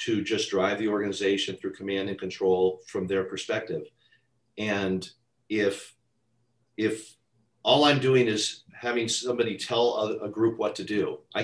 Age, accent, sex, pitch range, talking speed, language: 40-59, American, male, 105-135 Hz, 150 wpm, English